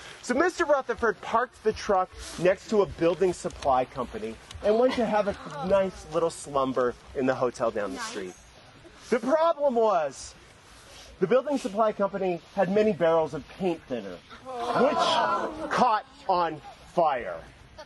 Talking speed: 145 wpm